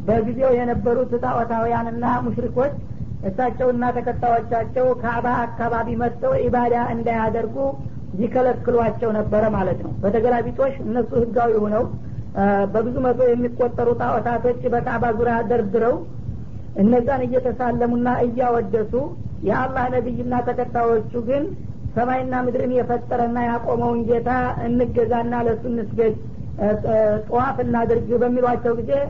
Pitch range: 230-245 Hz